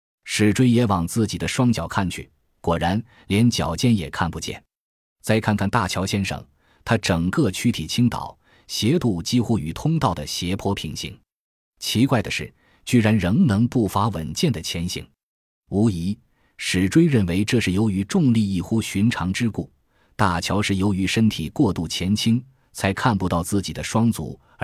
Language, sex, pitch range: Chinese, male, 85-115 Hz